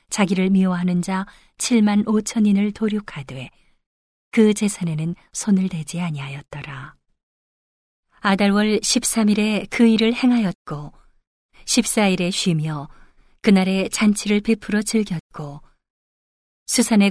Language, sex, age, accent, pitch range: Korean, female, 40-59, native, 180-215 Hz